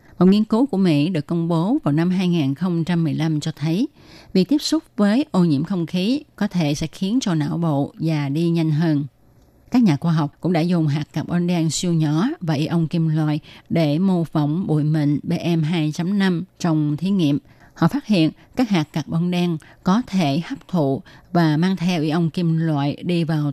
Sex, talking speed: female, 195 wpm